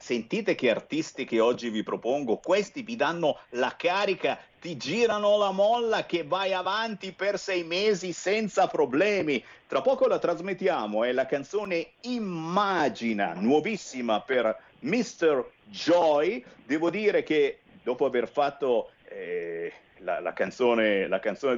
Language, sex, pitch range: Italian, male, 175-260 Hz